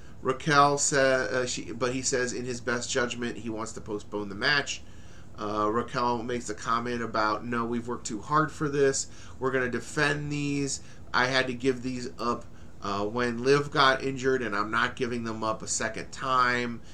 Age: 30-49